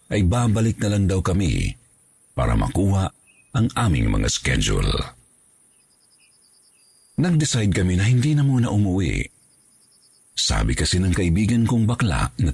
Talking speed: 130 wpm